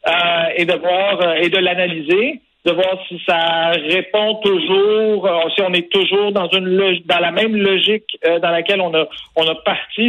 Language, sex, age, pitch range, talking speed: French, male, 60-79, 155-185 Hz, 195 wpm